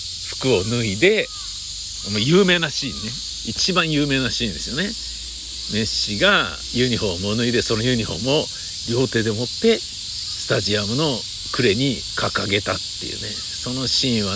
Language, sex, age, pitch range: Japanese, male, 60-79, 95-145 Hz